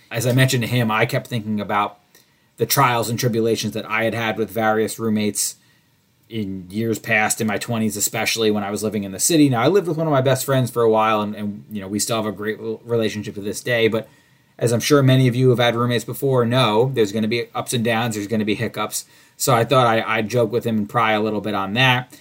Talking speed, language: 265 wpm, English